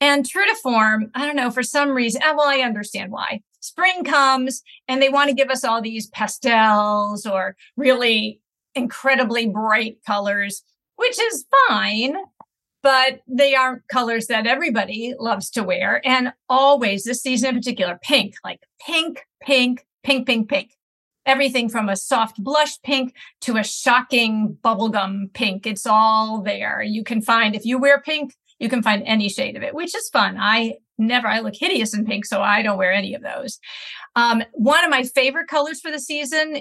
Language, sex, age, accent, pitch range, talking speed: English, female, 50-69, American, 215-275 Hz, 180 wpm